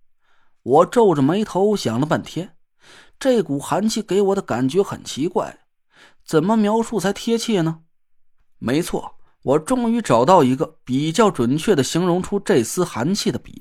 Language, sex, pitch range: Chinese, male, 160-215 Hz